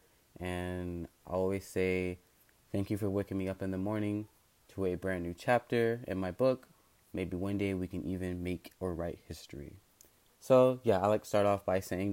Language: English